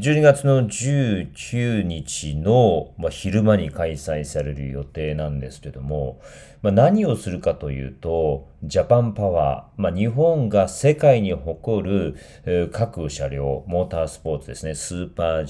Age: 40-59